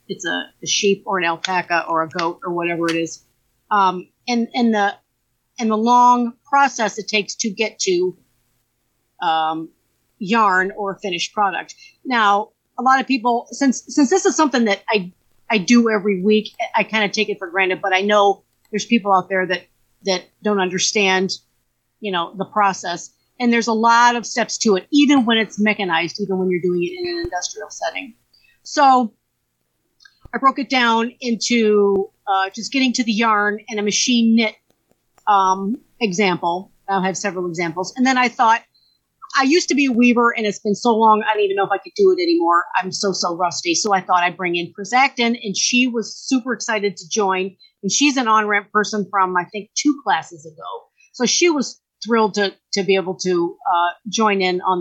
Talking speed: 200 wpm